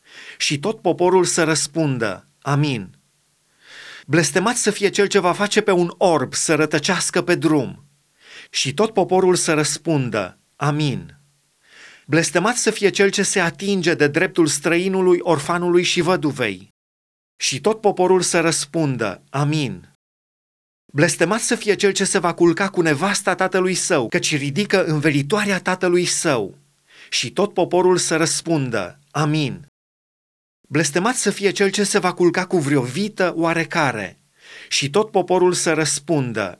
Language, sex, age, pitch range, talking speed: Romanian, male, 30-49, 150-190 Hz, 140 wpm